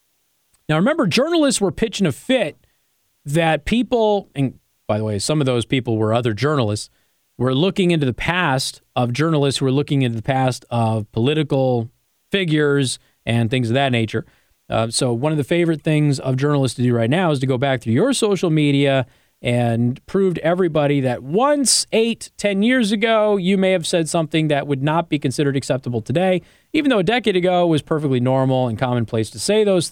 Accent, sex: American, male